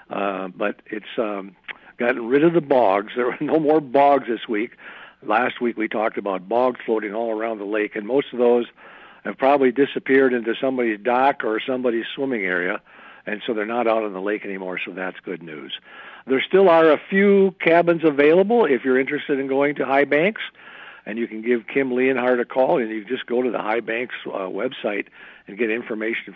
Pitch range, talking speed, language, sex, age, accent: 115-150 Hz, 205 wpm, English, male, 60-79, American